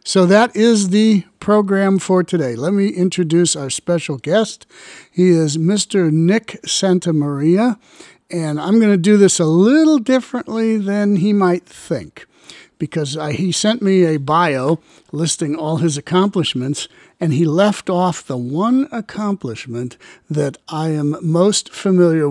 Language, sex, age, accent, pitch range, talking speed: English, male, 60-79, American, 150-195 Hz, 145 wpm